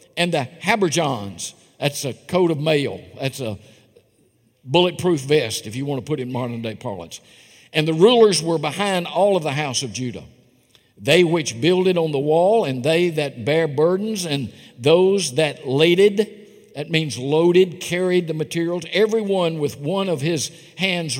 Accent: American